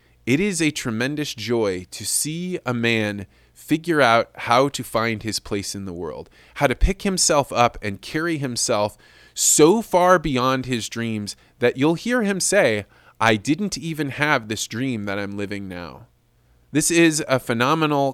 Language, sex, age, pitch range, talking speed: English, male, 20-39, 105-145 Hz, 170 wpm